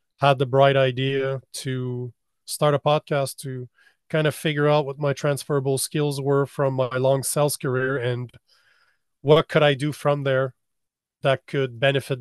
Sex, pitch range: male, 125-140 Hz